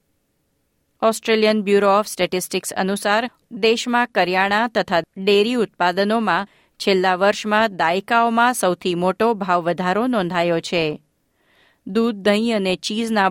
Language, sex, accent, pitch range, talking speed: Gujarati, female, native, 180-220 Hz, 100 wpm